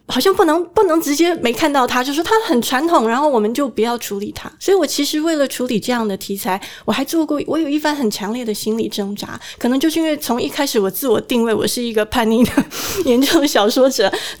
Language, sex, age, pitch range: Chinese, female, 20-39, 215-310 Hz